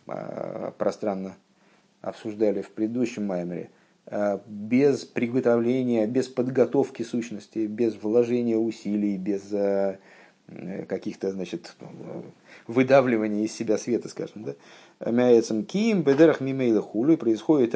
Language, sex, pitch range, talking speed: Russian, male, 105-130 Hz, 85 wpm